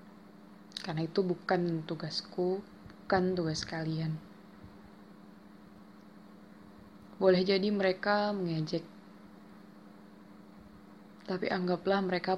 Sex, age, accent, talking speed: female, 20-39, native, 70 wpm